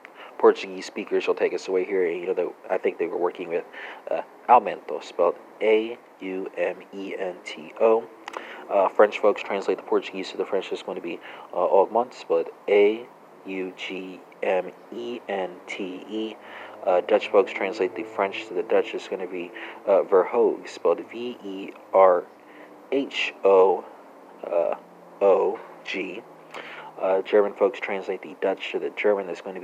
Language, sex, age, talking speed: English, male, 40-59, 170 wpm